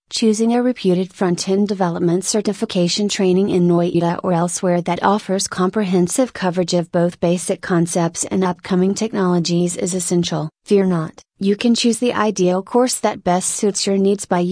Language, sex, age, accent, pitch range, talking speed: English, female, 30-49, American, 175-205 Hz, 155 wpm